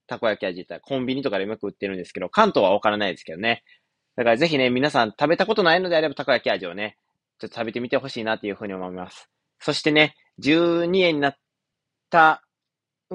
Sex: male